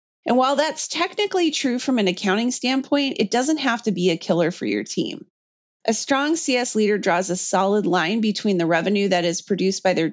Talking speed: 205 wpm